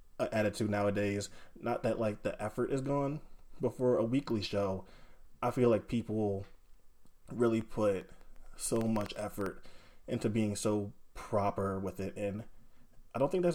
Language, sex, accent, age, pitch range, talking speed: English, male, American, 20-39, 100-115 Hz, 155 wpm